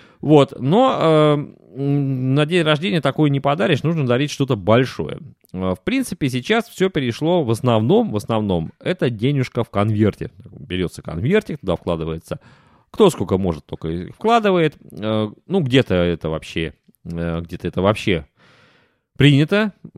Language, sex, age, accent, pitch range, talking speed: Russian, male, 30-49, native, 95-140 Hz, 130 wpm